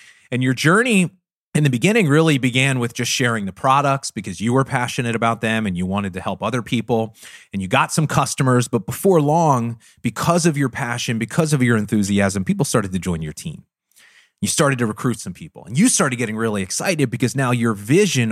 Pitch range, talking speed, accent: 110-145 Hz, 210 wpm, American